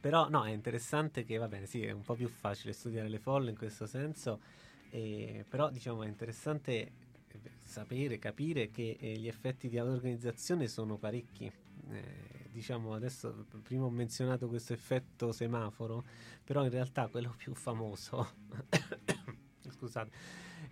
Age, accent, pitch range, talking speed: 30-49, native, 110-130 Hz, 145 wpm